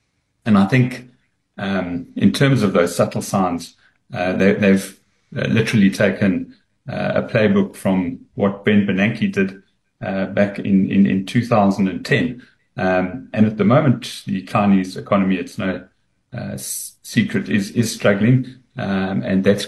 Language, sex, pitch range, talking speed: English, male, 95-110 Hz, 140 wpm